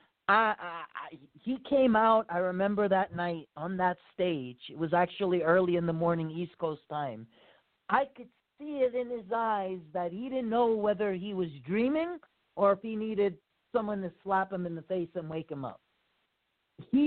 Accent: American